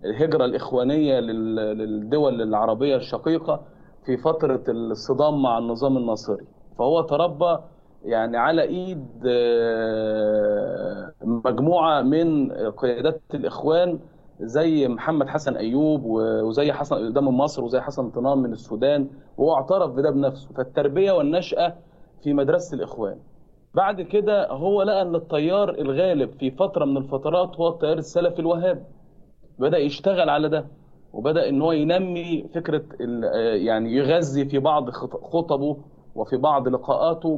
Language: Arabic